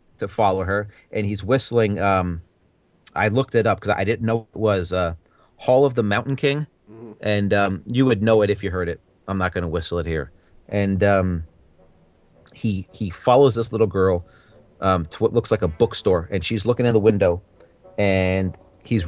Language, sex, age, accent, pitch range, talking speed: English, male, 30-49, American, 95-115 Hz, 200 wpm